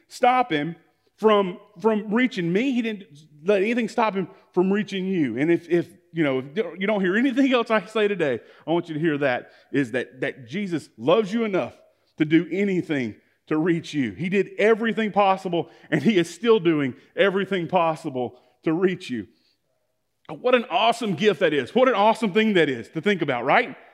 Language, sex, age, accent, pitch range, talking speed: English, male, 30-49, American, 165-225 Hz, 195 wpm